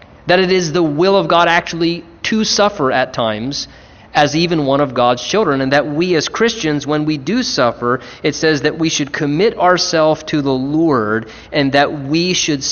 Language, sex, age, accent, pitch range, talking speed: English, male, 30-49, American, 140-180 Hz, 195 wpm